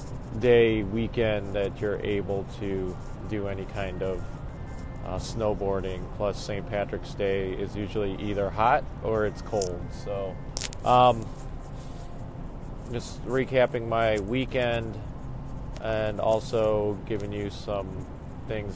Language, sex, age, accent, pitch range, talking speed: English, male, 30-49, American, 100-120 Hz, 110 wpm